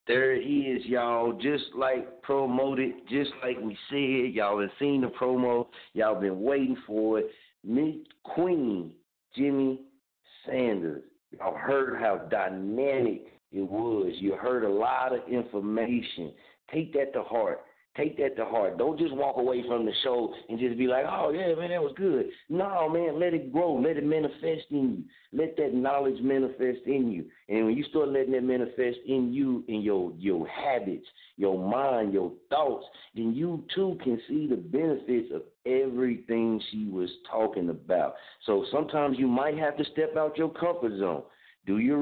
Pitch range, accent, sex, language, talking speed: 105-145 Hz, American, male, English, 175 wpm